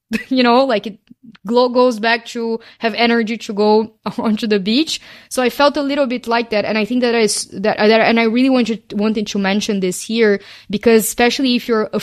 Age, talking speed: 20-39, 215 wpm